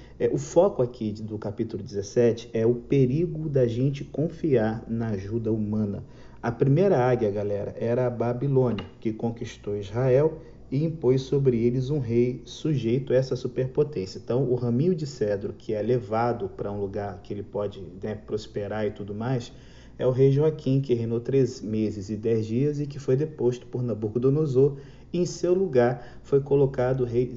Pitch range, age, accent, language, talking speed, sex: 115-140 Hz, 40-59, Brazilian, Portuguese, 170 wpm, male